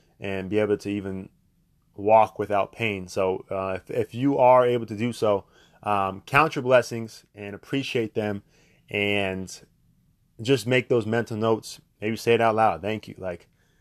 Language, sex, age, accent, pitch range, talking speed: English, male, 20-39, American, 105-130 Hz, 170 wpm